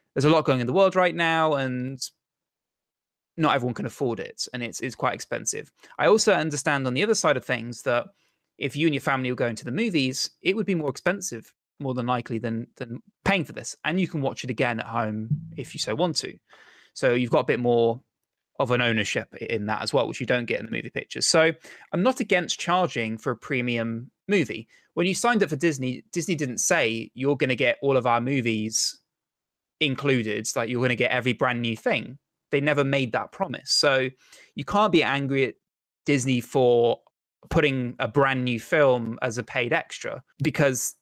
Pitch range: 120-165 Hz